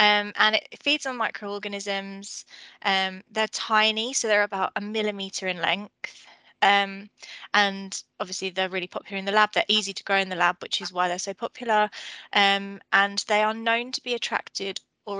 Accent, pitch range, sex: British, 190-215 Hz, female